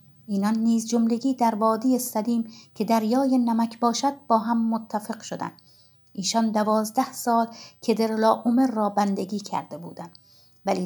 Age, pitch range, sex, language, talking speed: 50-69, 215-245 Hz, female, Persian, 140 wpm